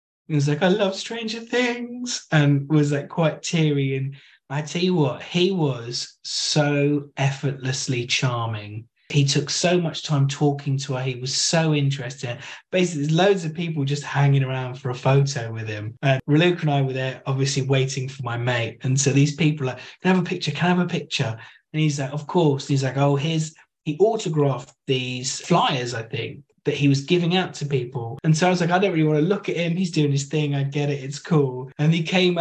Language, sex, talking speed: English, male, 225 wpm